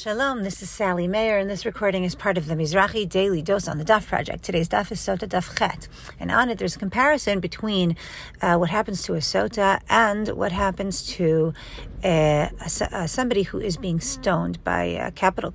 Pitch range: 175-215 Hz